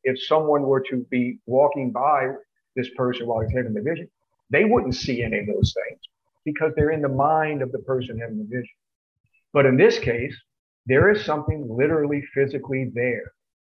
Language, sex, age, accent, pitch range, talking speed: English, male, 50-69, American, 125-150 Hz, 185 wpm